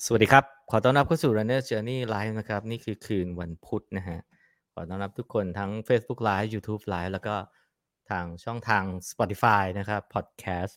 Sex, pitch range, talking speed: male, 95-125 Hz, 65 wpm